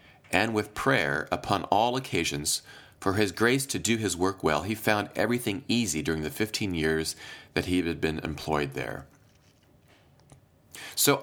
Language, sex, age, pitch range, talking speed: English, male, 40-59, 95-135 Hz, 155 wpm